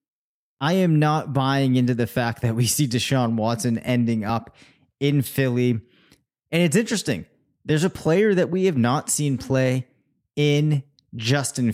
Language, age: English, 20-39